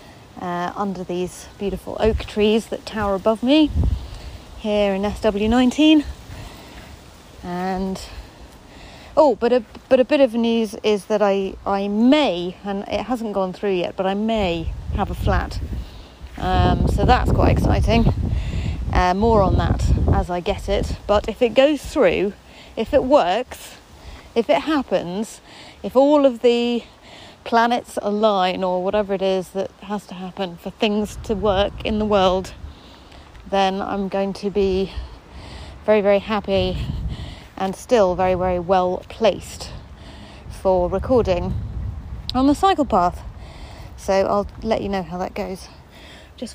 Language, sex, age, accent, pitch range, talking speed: English, female, 30-49, British, 185-240 Hz, 145 wpm